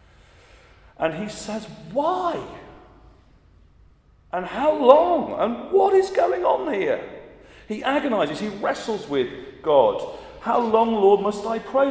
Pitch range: 160-260 Hz